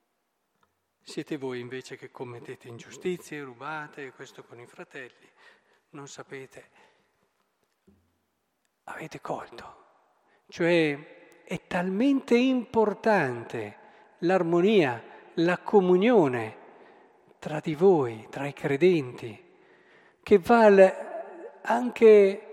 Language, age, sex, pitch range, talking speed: Italian, 40-59, male, 150-225 Hz, 85 wpm